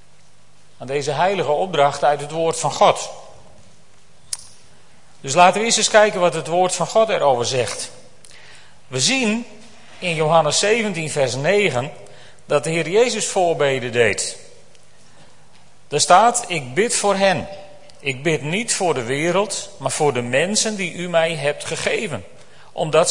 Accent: Dutch